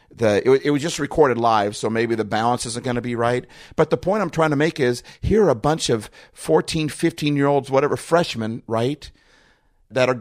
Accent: American